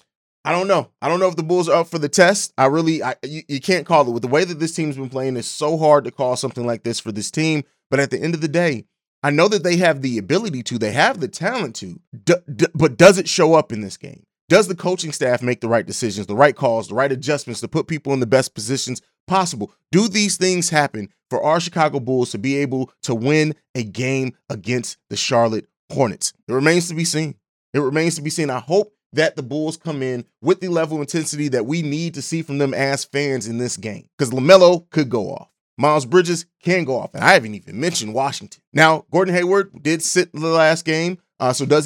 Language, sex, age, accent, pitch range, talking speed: English, male, 30-49, American, 130-165 Hz, 245 wpm